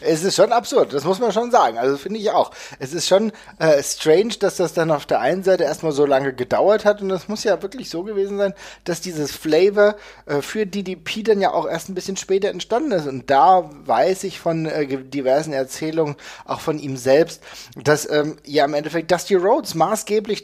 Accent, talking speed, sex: German, 215 wpm, male